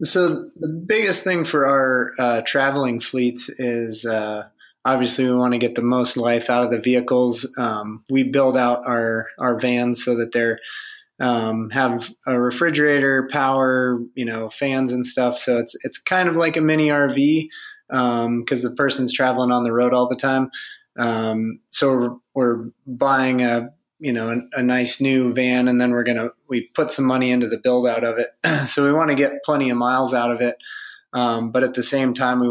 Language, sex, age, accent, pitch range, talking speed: English, male, 20-39, American, 120-135 Hz, 200 wpm